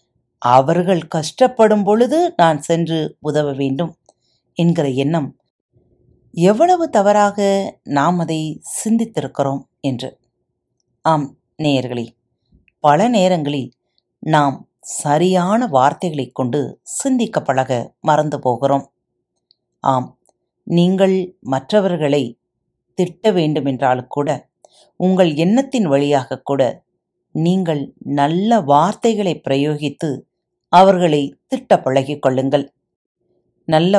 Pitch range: 135-185 Hz